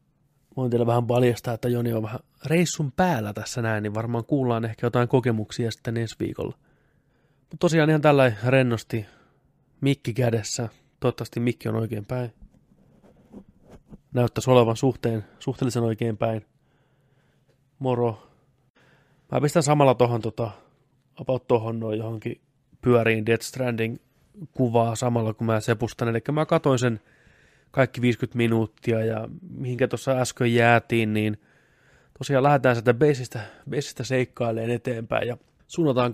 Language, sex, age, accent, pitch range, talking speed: Finnish, male, 30-49, native, 115-135 Hz, 130 wpm